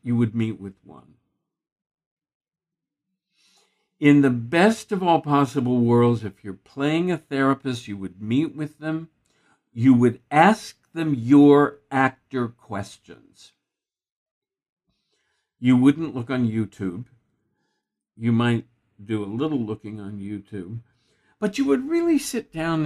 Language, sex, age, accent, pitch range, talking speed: English, male, 60-79, American, 115-170 Hz, 125 wpm